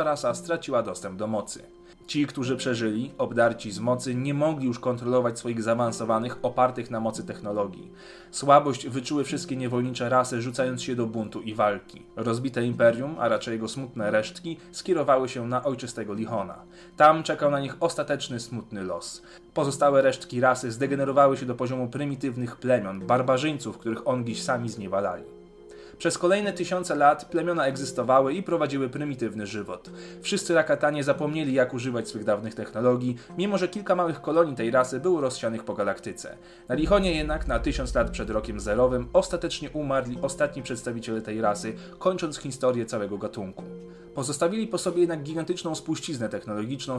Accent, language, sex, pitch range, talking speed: native, Polish, male, 115-155 Hz, 155 wpm